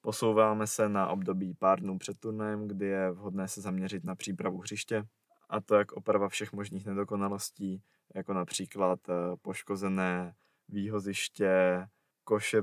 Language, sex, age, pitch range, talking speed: Czech, male, 20-39, 95-105 Hz, 135 wpm